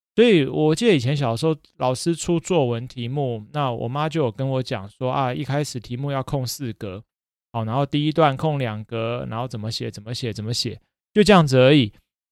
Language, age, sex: Chinese, 20-39, male